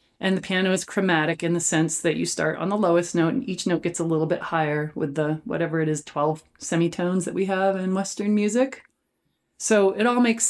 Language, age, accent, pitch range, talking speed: English, 30-49, American, 160-195 Hz, 230 wpm